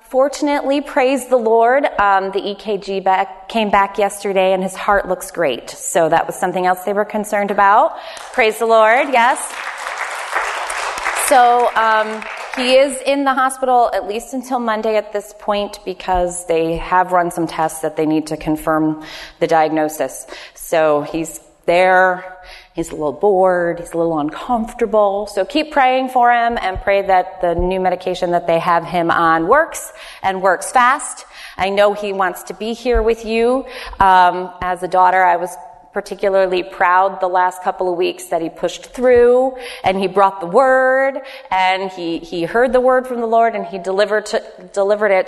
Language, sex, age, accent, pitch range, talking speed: English, female, 30-49, American, 180-225 Hz, 175 wpm